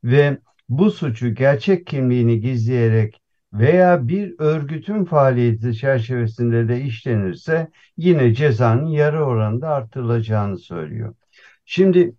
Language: Turkish